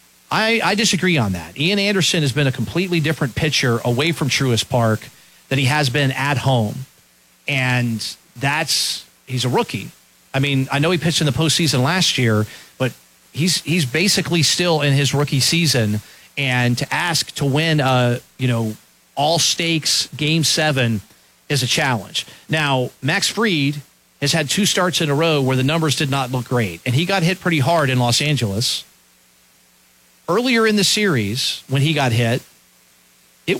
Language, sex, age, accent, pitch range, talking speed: English, male, 40-59, American, 120-165 Hz, 175 wpm